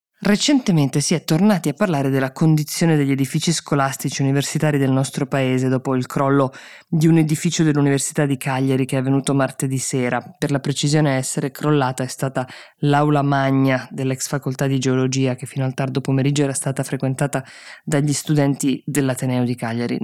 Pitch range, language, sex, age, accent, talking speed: 130-150 Hz, Italian, female, 20-39, native, 165 wpm